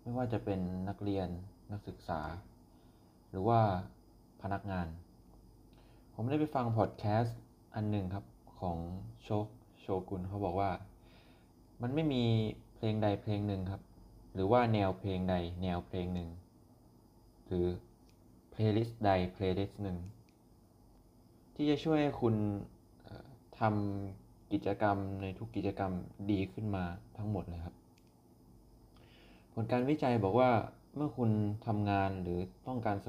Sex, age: male, 20-39